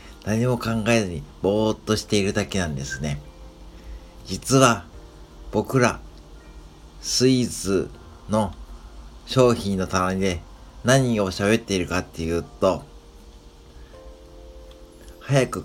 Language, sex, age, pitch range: Japanese, male, 50-69, 80-120 Hz